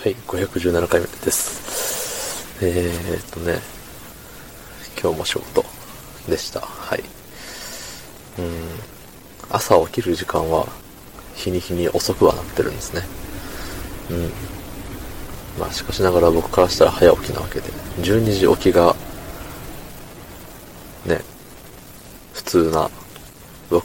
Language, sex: Japanese, male